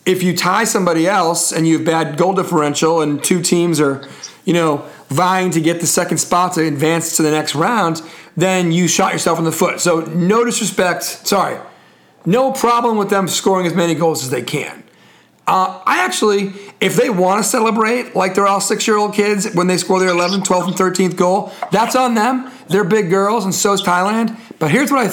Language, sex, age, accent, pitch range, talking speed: English, male, 40-59, American, 175-210 Hz, 210 wpm